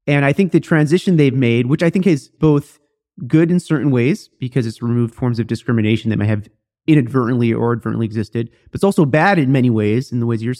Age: 30-49